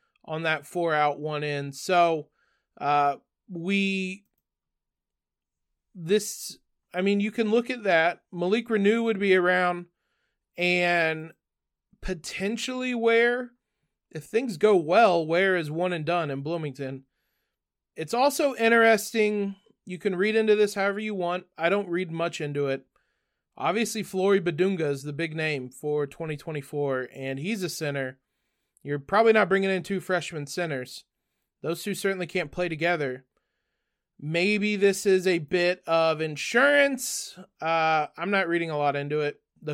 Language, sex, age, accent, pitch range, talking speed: English, male, 30-49, American, 155-195 Hz, 145 wpm